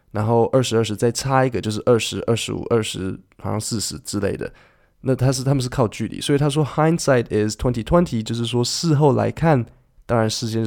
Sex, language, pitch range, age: male, Chinese, 105-130 Hz, 20-39